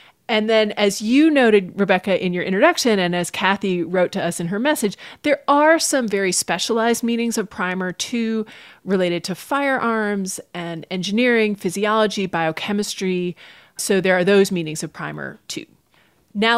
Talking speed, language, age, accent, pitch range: 155 wpm, English, 30-49, American, 180-225 Hz